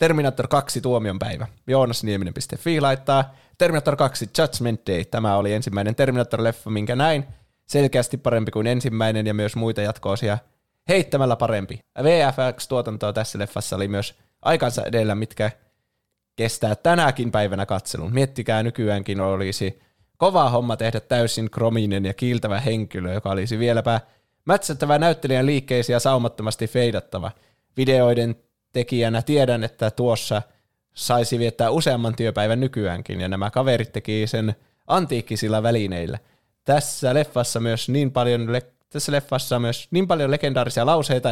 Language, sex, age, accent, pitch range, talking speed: Finnish, male, 20-39, native, 105-130 Hz, 125 wpm